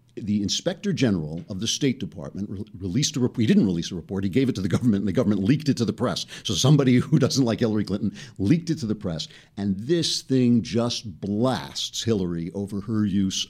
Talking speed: 225 wpm